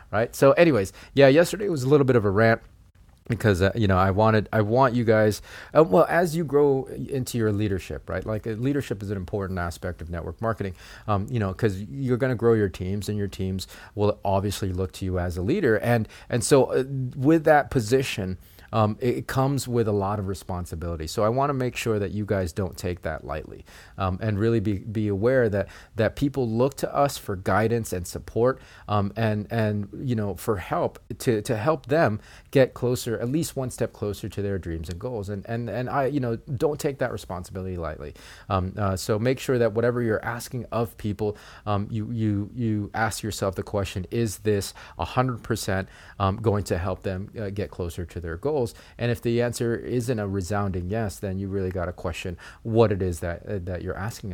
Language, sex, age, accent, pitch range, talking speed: English, male, 30-49, American, 95-120 Hz, 215 wpm